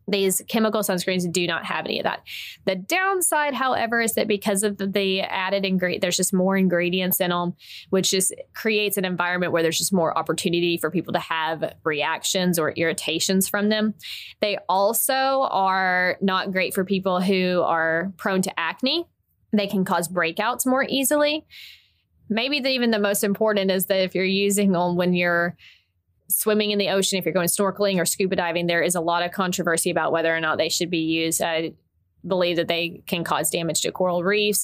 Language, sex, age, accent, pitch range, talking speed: English, female, 20-39, American, 170-205 Hz, 190 wpm